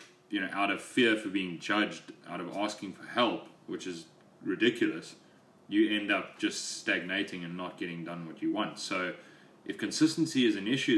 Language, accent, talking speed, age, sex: English, Australian, 185 wpm, 30-49, male